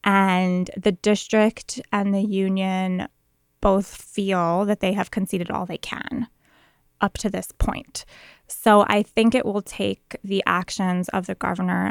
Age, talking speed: 20-39, 150 wpm